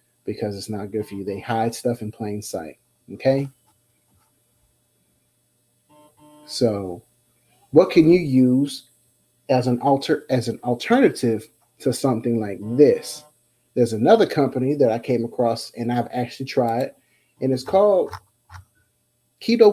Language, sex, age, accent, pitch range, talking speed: English, male, 30-49, American, 115-140 Hz, 130 wpm